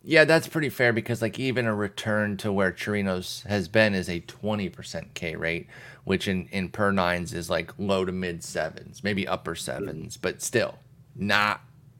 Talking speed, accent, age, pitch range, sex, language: 180 wpm, American, 30-49, 100-135 Hz, male, English